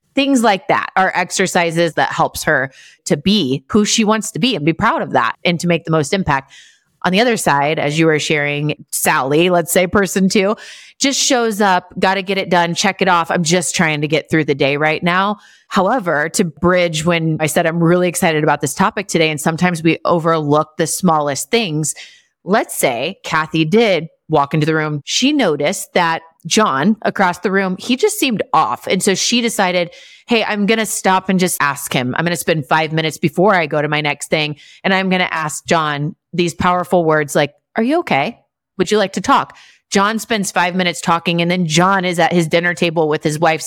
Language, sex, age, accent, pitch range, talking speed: English, female, 30-49, American, 160-195 Hz, 220 wpm